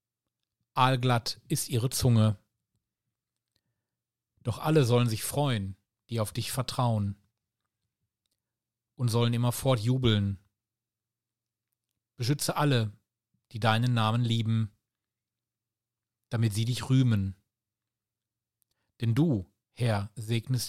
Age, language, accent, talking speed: 40-59, German, German, 90 wpm